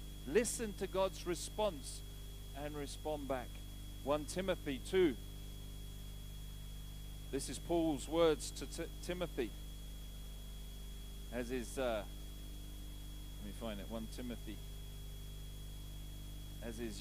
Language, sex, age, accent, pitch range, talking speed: English, male, 40-59, British, 115-165 Hz, 100 wpm